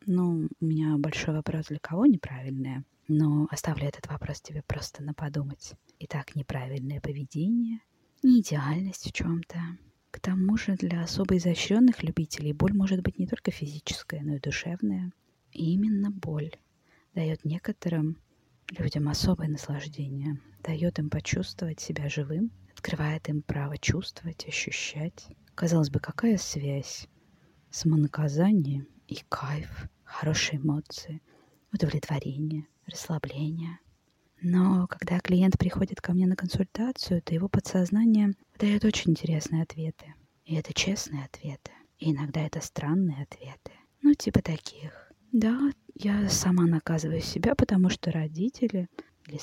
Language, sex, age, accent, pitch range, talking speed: Russian, female, 20-39, native, 150-185 Hz, 125 wpm